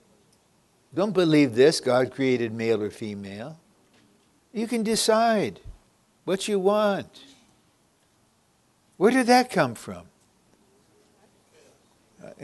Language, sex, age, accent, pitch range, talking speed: English, male, 60-79, American, 120-185 Hz, 95 wpm